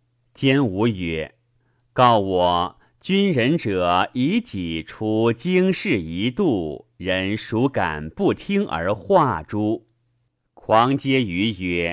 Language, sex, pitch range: Chinese, male, 100-170 Hz